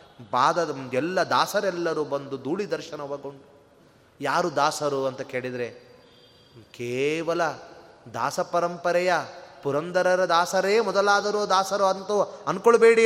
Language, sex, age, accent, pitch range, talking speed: Kannada, male, 30-49, native, 170-220 Hz, 85 wpm